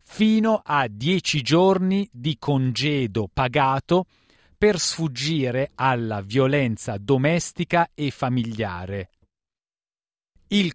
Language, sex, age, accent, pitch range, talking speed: Italian, male, 40-59, native, 125-165 Hz, 85 wpm